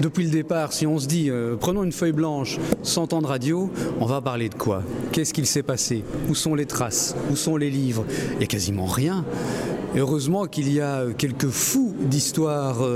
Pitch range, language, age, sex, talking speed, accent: 130-155 Hz, French, 40-59, male, 210 wpm, French